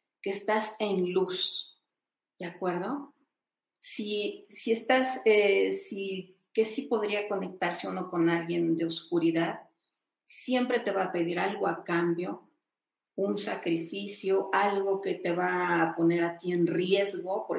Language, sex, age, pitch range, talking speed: Spanish, female, 40-59, 175-220 Hz, 140 wpm